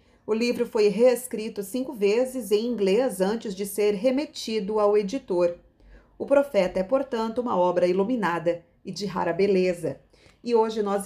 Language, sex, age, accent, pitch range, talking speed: Portuguese, female, 40-59, Brazilian, 185-235 Hz, 150 wpm